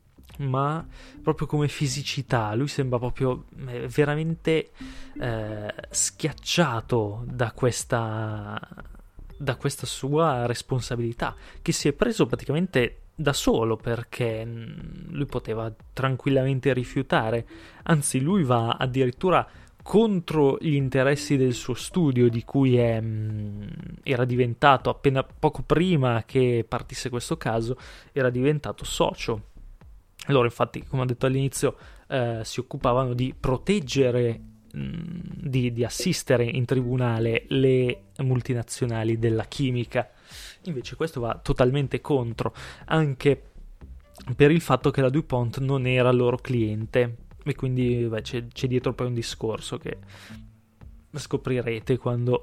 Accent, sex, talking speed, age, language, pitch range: native, male, 115 wpm, 20-39, Italian, 115-140 Hz